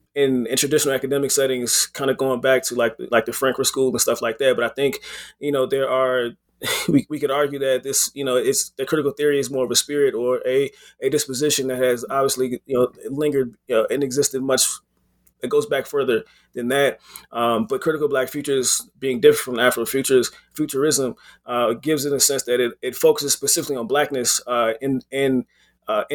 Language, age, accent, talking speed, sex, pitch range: English, 20-39, American, 210 wpm, male, 125-150 Hz